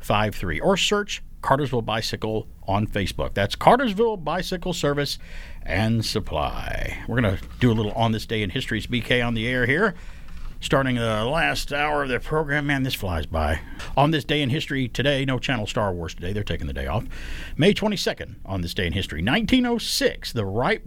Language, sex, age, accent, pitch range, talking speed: English, male, 50-69, American, 95-145 Hz, 190 wpm